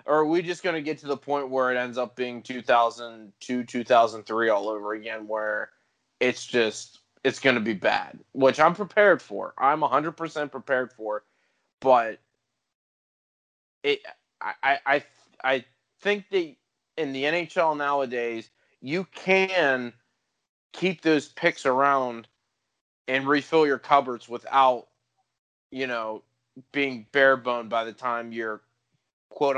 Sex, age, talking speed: male, 20-39, 135 wpm